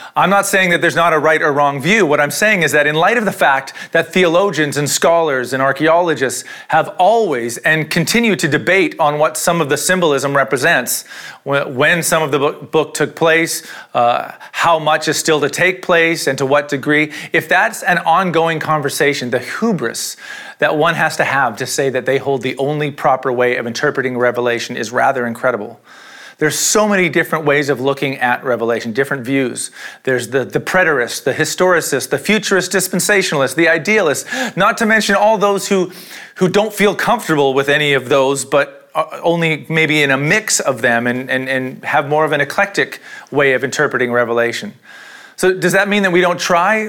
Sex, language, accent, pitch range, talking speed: male, English, American, 135-180 Hz, 190 wpm